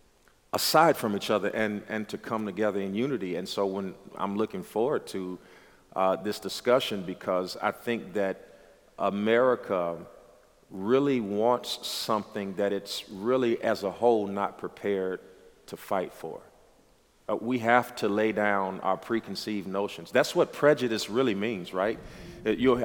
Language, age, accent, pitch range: English, 40-59, American, 95-115 Hz